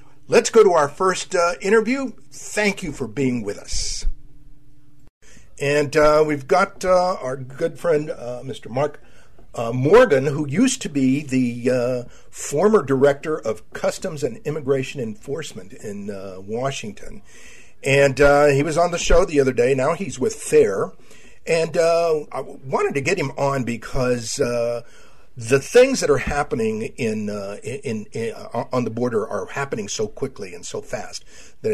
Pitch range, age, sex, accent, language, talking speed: 120-160 Hz, 50-69, male, American, English, 165 wpm